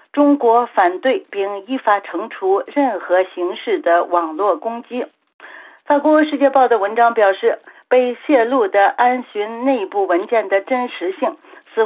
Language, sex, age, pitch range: Chinese, female, 50-69, 195-290 Hz